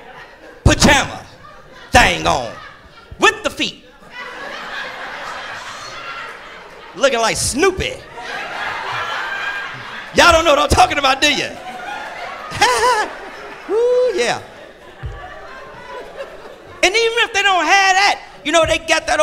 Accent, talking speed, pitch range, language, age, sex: American, 100 wpm, 285-400 Hz, English, 40-59, male